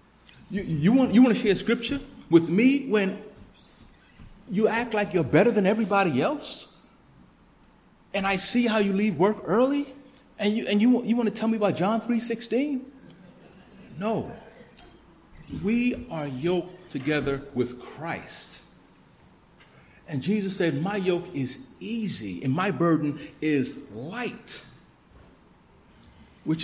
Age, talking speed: 40-59, 135 wpm